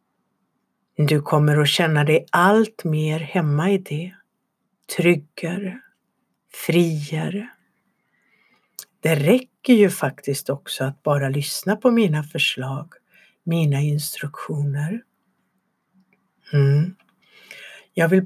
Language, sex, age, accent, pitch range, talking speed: Swedish, female, 60-79, native, 160-200 Hz, 90 wpm